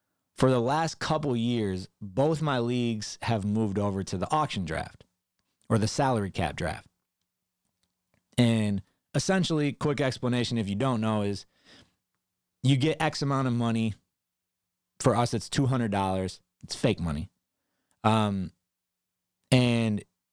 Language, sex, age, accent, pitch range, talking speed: English, male, 30-49, American, 95-130 Hz, 135 wpm